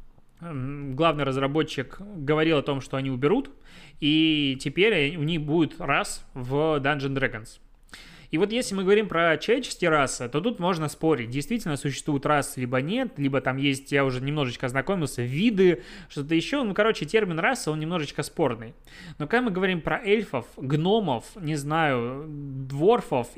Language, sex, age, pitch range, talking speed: Russian, male, 20-39, 130-170 Hz, 155 wpm